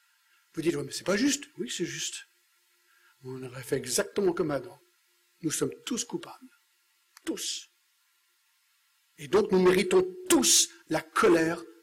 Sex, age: male, 60-79